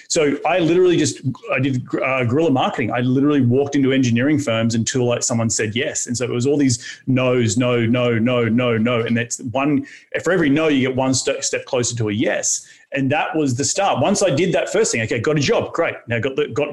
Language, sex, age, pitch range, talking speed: English, male, 30-49, 125-155 Hz, 240 wpm